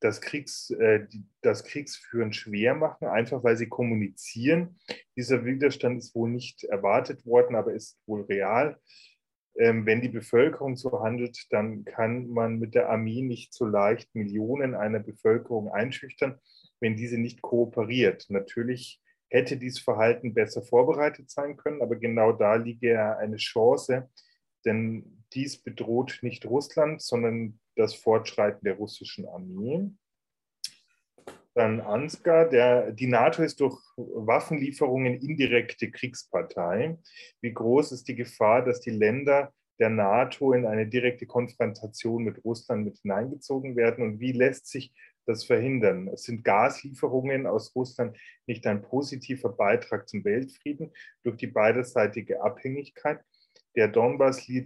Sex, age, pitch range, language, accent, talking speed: male, 30-49, 115-140 Hz, German, German, 130 wpm